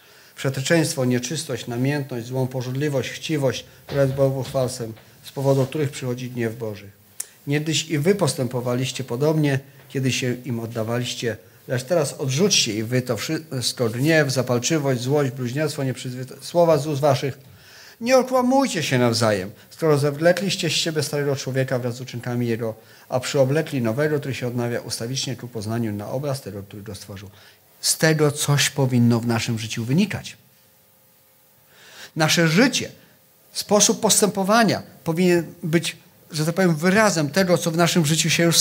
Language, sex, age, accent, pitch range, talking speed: Polish, male, 40-59, native, 120-170 Hz, 145 wpm